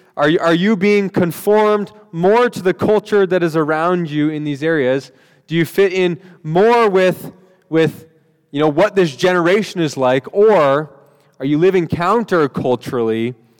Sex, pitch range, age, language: male, 135-180 Hz, 20-39, English